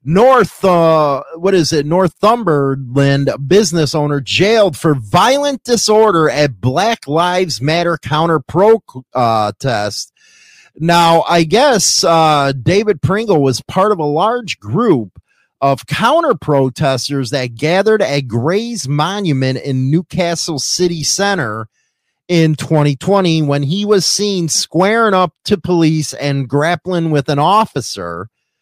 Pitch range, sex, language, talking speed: 140-185 Hz, male, English, 125 wpm